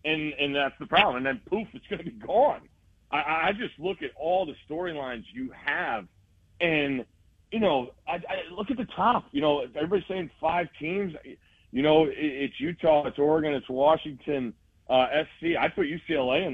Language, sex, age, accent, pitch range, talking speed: English, male, 40-59, American, 130-175 Hz, 190 wpm